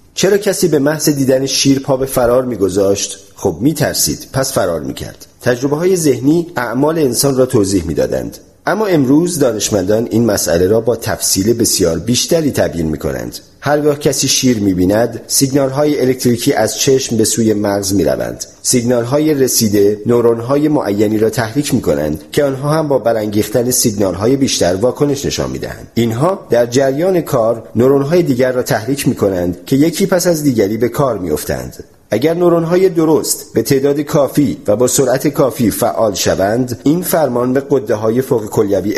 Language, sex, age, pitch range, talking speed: Persian, male, 40-59, 110-145 Hz, 160 wpm